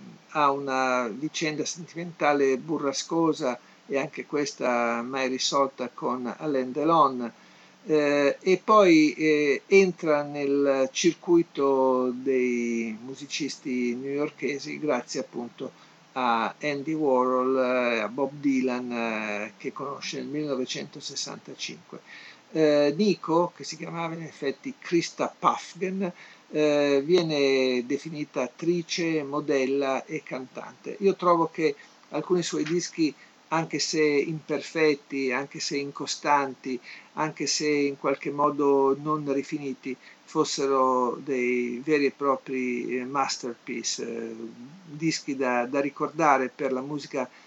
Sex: male